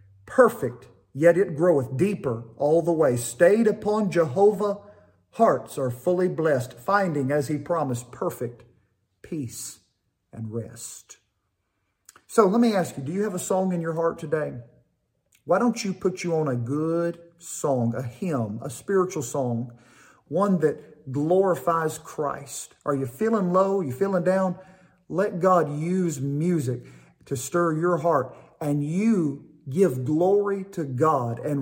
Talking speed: 150 wpm